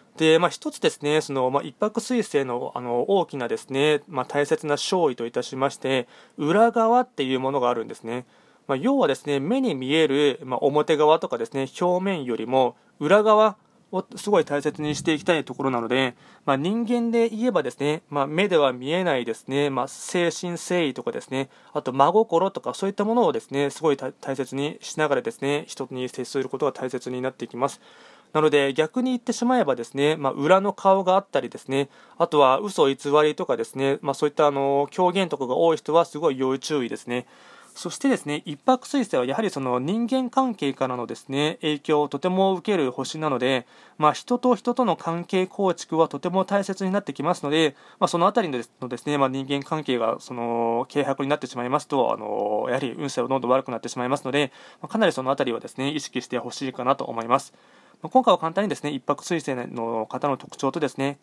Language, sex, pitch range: Japanese, male, 130-175 Hz